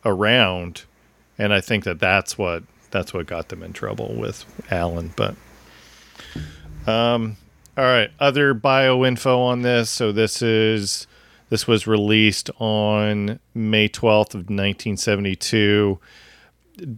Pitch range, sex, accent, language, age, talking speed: 100-115 Hz, male, American, English, 40-59, 125 wpm